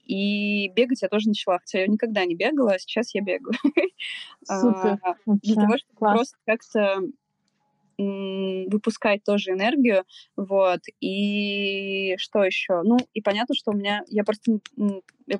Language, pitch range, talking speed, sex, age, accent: Russian, 195-225 Hz, 135 wpm, female, 20-39, native